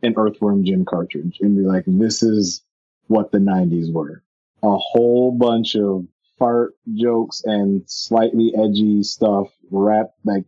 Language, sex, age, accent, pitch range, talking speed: English, male, 30-49, American, 100-120 Hz, 145 wpm